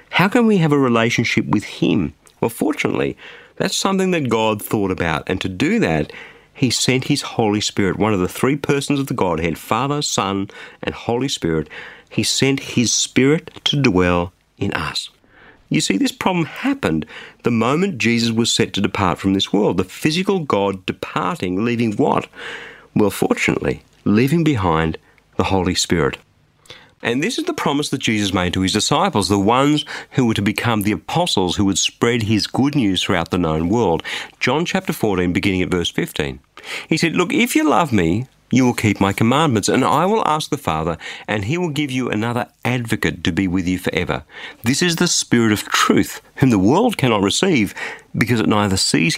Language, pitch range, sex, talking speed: English, 95-140 Hz, male, 190 wpm